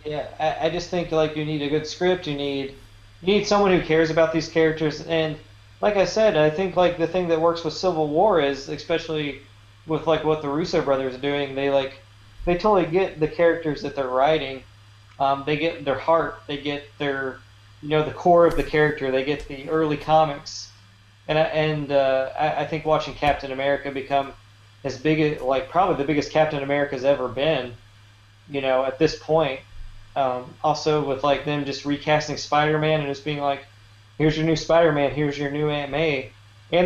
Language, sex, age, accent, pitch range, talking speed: English, male, 20-39, American, 130-160 Hz, 200 wpm